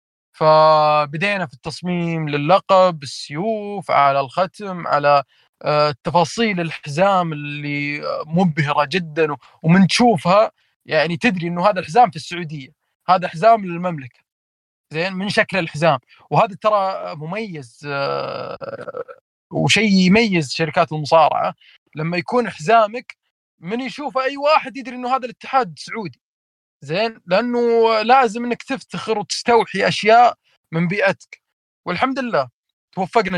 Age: 30-49